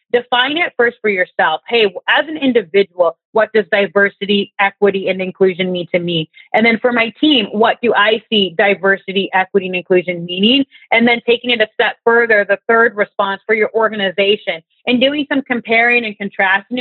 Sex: female